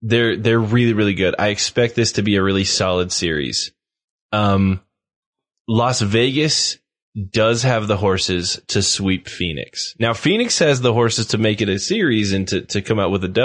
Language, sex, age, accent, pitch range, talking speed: English, male, 10-29, American, 100-120 Hz, 185 wpm